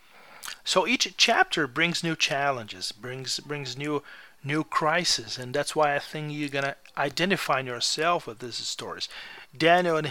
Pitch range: 135-170 Hz